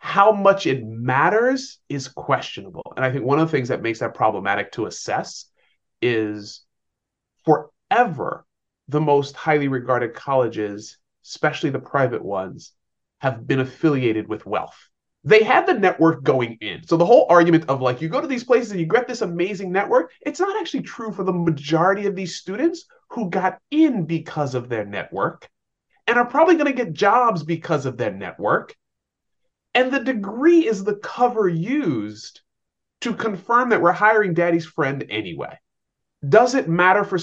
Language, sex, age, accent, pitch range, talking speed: English, male, 30-49, American, 130-215 Hz, 170 wpm